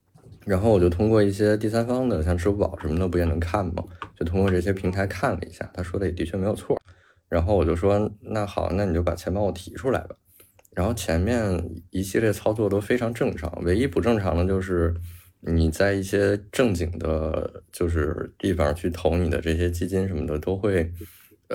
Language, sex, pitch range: Chinese, male, 85-105 Hz